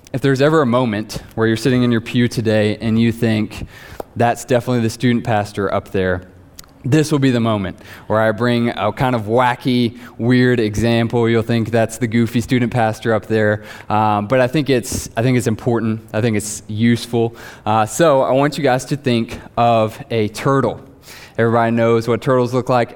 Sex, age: male, 20-39